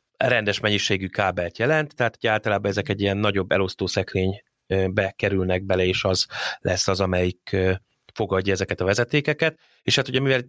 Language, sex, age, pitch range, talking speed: Hungarian, male, 30-49, 95-110 Hz, 150 wpm